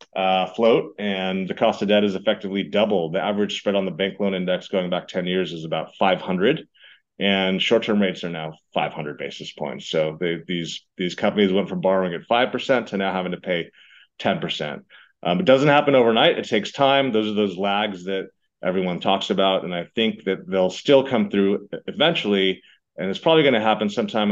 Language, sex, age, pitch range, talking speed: English, male, 30-49, 95-115 Hz, 200 wpm